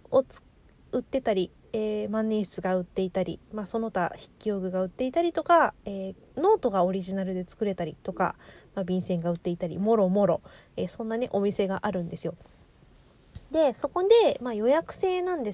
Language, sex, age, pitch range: Japanese, female, 20-39, 185-245 Hz